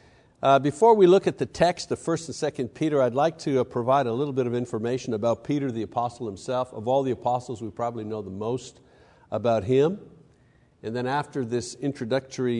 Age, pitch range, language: 60-79, 115-145 Hz, English